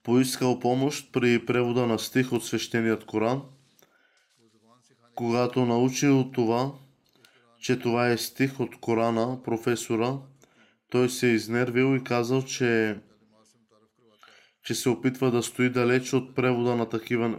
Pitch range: 115-130 Hz